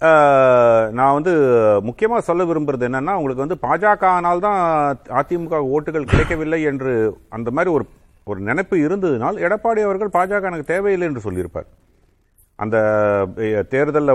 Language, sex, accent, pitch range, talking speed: Tamil, male, native, 125-170 Hz, 120 wpm